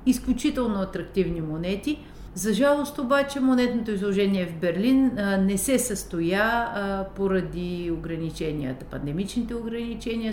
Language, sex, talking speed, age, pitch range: Bulgarian, female, 100 wpm, 50-69, 170-220 Hz